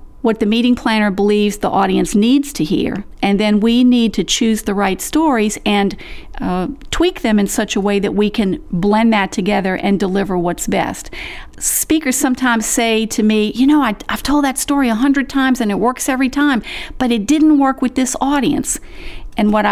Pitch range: 205-270 Hz